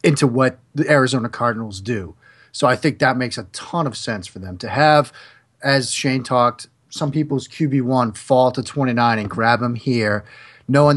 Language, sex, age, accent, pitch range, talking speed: English, male, 30-49, American, 120-150 Hz, 180 wpm